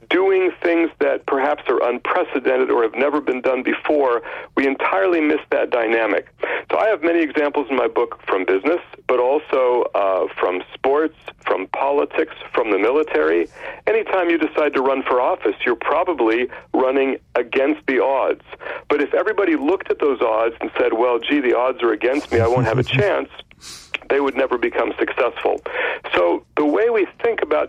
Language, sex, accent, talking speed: English, male, American, 180 wpm